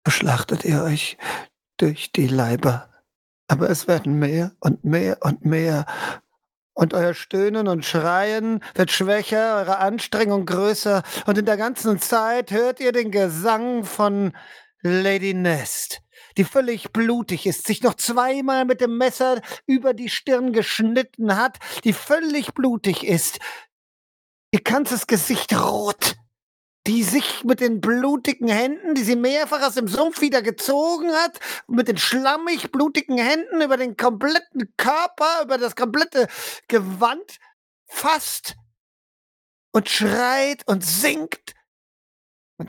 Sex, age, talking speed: male, 50-69, 130 wpm